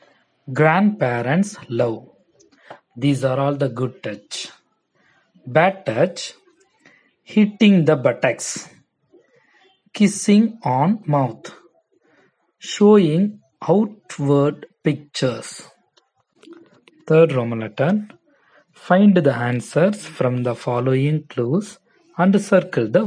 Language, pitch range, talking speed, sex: Tamil, 140-210 Hz, 85 wpm, male